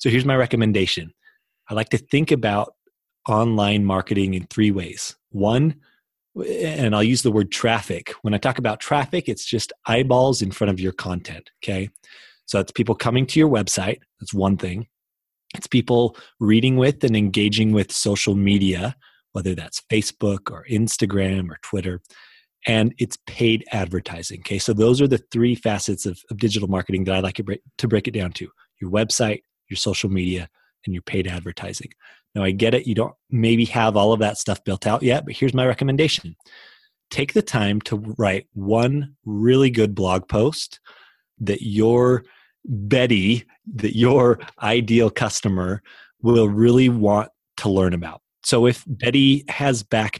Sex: male